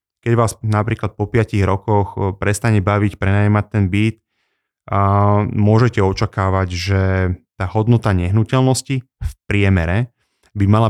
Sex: male